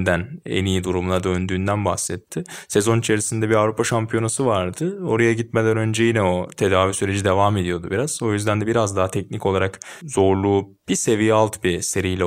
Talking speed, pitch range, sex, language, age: 165 wpm, 90-115 Hz, male, Turkish, 20-39